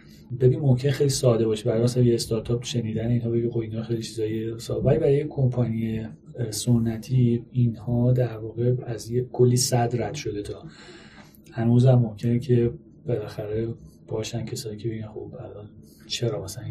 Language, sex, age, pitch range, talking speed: Persian, male, 30-49, 110-125 Hz, 150 wpm